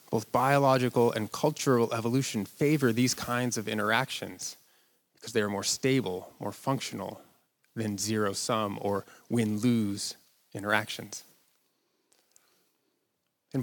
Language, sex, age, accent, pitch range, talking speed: English, male, 20-39, American, 110-135 Hz, 100 wpm